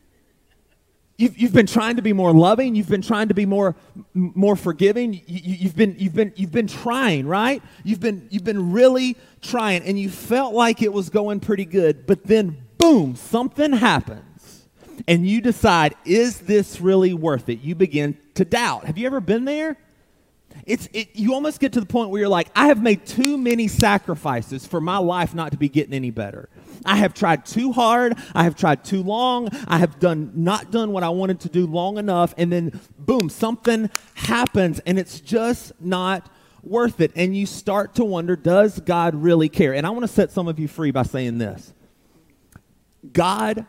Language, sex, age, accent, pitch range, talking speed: English, male, 30-49, American, 165-225 Hz, 200 wpm